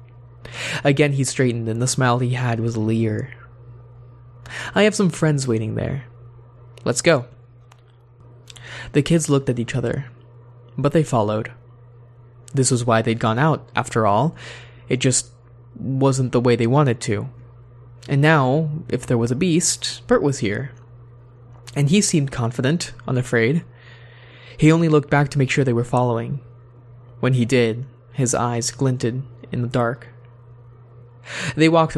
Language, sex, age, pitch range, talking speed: English, male, 20-39, 120-135 Hz, 150 wpm